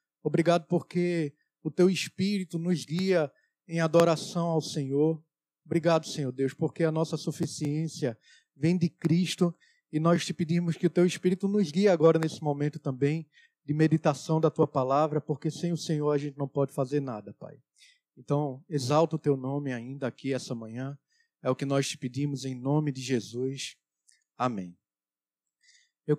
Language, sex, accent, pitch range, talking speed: Portuguese, male, Brazilian, 150-190 Hz, 165 wpm